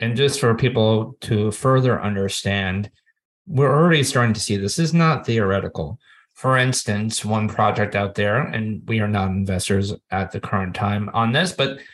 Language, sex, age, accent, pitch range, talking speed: English, male, 30-49, American, 110-130 Hz, 175 wpm